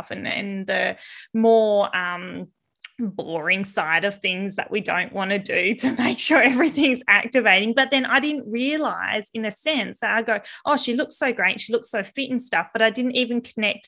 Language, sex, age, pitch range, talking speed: English, female, 20-39, 205-245 Hz, 205 wpm